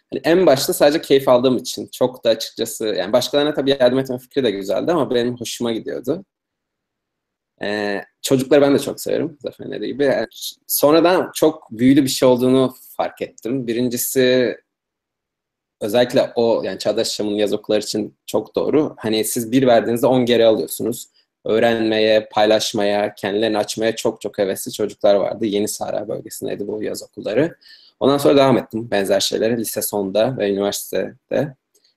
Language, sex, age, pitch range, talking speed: Turkish, male, 20-39, 110-135 Hz, 150 wpm